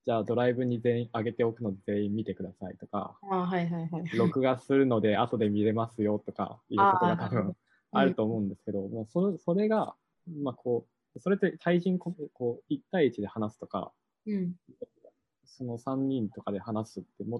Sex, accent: male, native